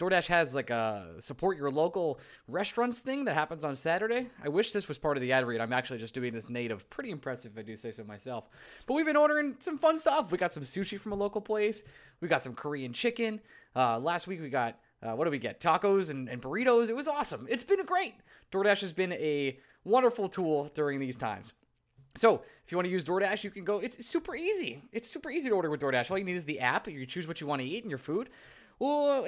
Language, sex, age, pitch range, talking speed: English, male, 20-39, 140-210 Hz, 250 wpm